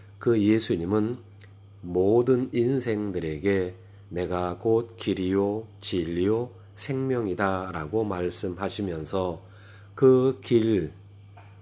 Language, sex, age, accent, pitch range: Korean, male, 30-49, native, 95-110 Hz